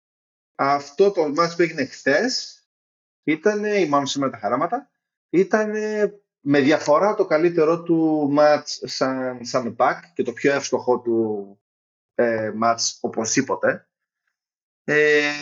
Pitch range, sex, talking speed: 125-195 Hz, male, 120 wpm